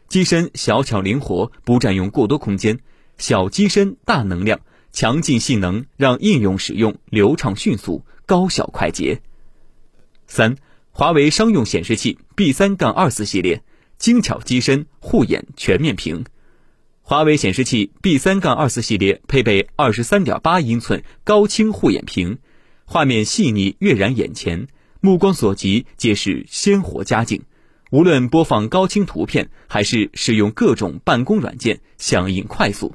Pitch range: 105-180 Hz